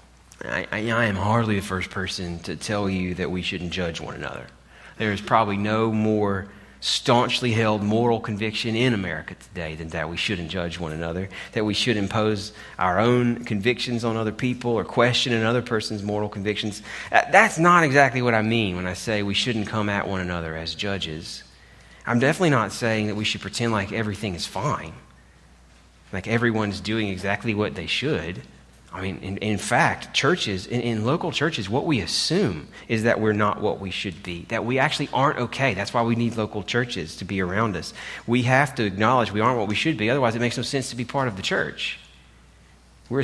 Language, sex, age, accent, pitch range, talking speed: English, male, 30-49, American, 95-120 Hz, 200 wpm